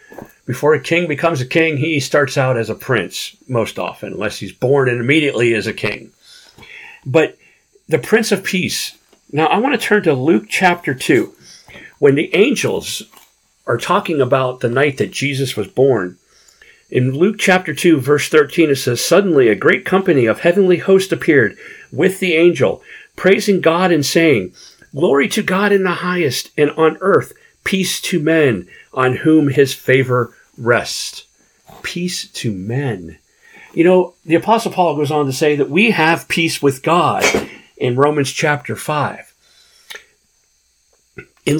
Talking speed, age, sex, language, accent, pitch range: 160 wpm, 50-69, male, English, American, 130-180 Hz